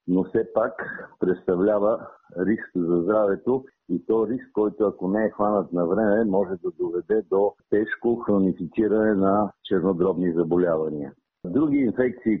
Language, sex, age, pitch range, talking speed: Bulgarian, male, 50-69, 95-110 Hz, 135 wpm